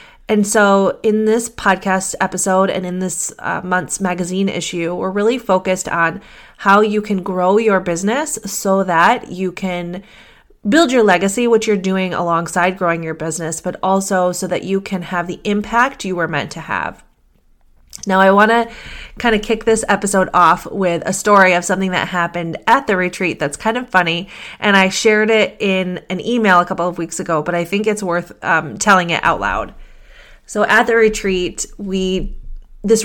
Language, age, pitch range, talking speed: English, 30-49, 175-215 Hz, 185 wpm